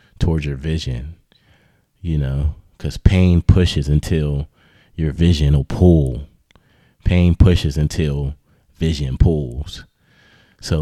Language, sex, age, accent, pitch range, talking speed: English, male, 30-49, American, 70-85 Hz, 105 wpm